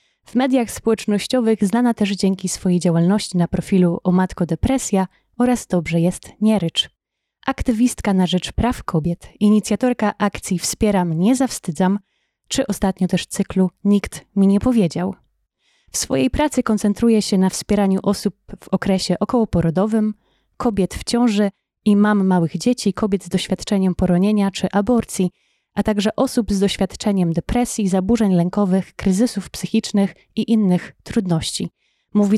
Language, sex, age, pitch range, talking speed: Polish, female, 20-39, 185-220 Hz, 135 wpm